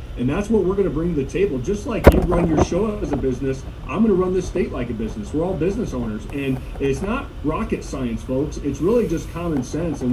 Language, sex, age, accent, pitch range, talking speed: English, male, 40-59, American, 140-185 Hz, 265 wpm